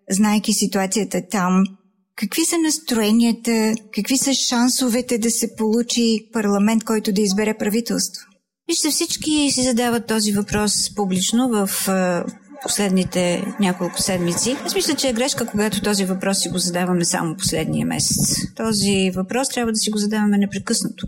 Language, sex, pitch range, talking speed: Bulgarian, female, 180-220 Hz, 140 wpm